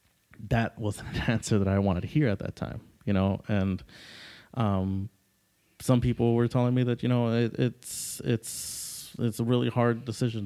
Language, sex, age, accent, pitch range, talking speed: English, male, 30-49, American, 95-115 Hz, 185 wpm